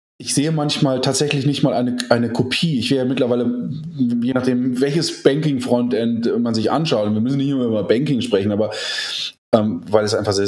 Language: German